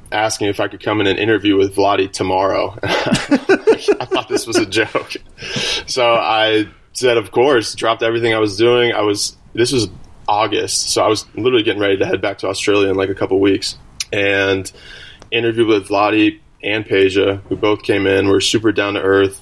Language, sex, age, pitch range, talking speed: English, male, 20-39, 100-115 Hz, 195 wpm